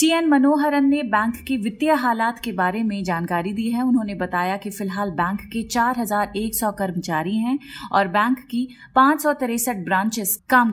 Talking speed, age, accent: 190 wpm, 30-49, native